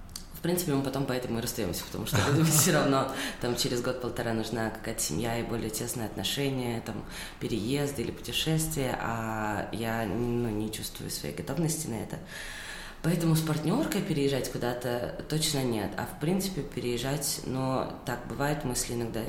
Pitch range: 120-160 Hz